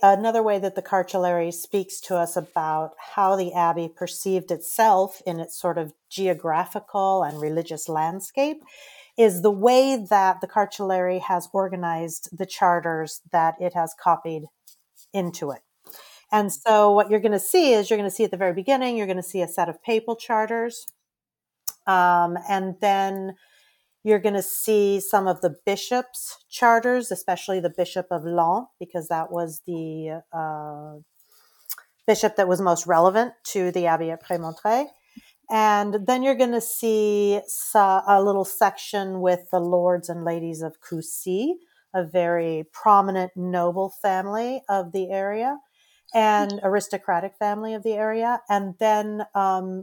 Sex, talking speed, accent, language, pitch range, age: female, 155 wpm, American, English, 175-215 Hz, 40-59